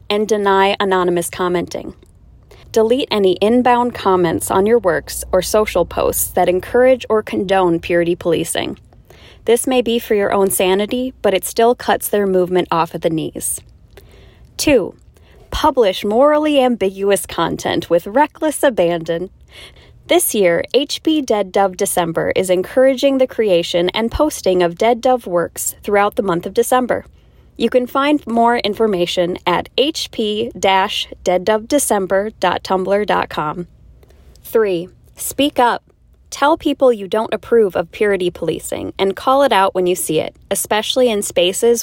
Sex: female